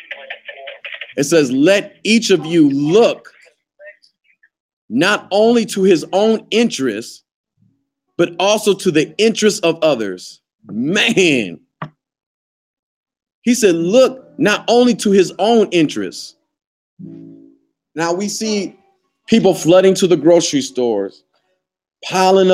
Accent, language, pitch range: American, English, 160-205 Hz